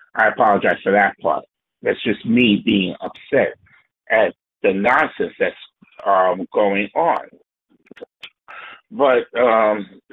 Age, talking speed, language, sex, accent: 60-79, 115 wpm, English, male, American